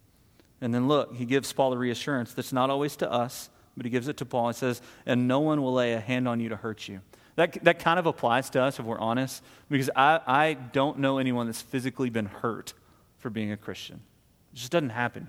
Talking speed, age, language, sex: 240 wpm, 30-49, English, male